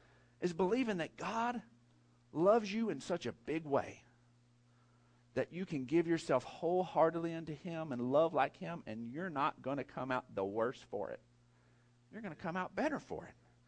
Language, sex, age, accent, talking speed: English, male, 50-69, American, 185 wpm